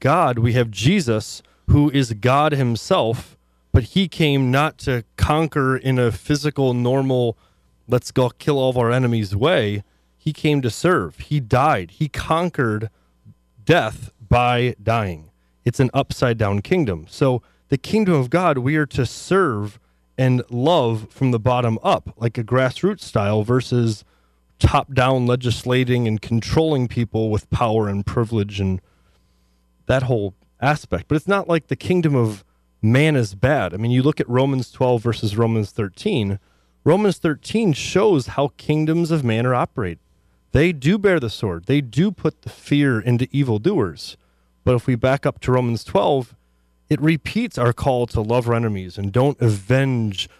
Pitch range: 110-145 Hz